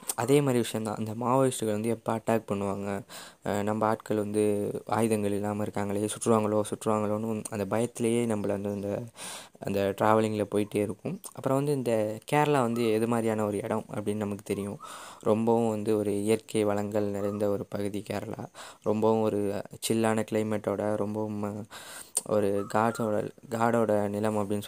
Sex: female